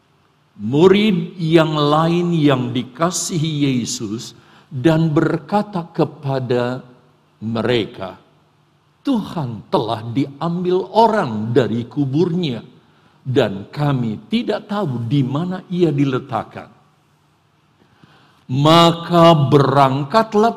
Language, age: Indonesian, 50-69